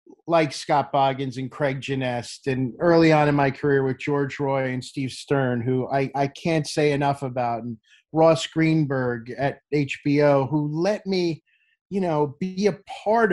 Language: English